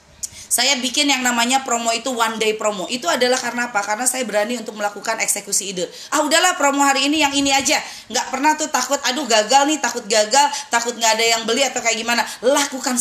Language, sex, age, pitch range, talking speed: Indonesian, female, 20-39, 220-270 Hz, 210 wpm